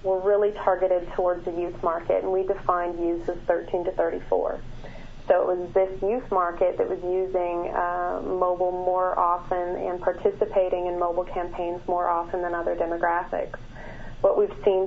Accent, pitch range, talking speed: American, 175-185 Hz, 165 wpm